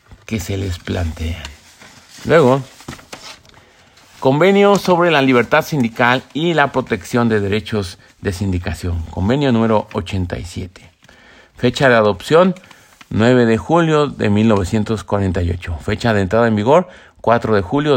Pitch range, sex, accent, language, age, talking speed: 100-135 Hz, male, Mexican, Spanish, 50-69, 120 wpm